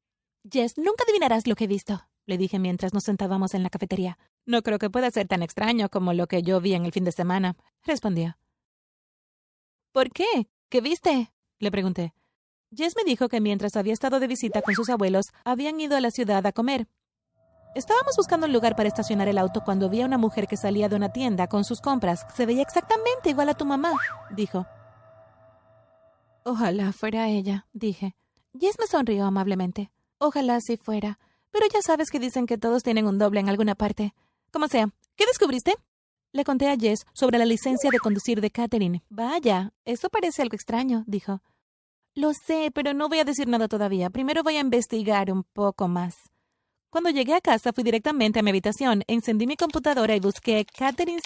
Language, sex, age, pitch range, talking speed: Spanish, female, 30-49, 200-275 Hz, 190 wpm